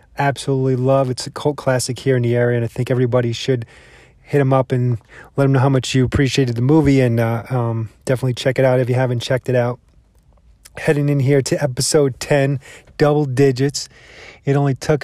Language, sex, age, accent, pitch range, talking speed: English, male, 30-49, American, 125-140 Hz, 210 wpm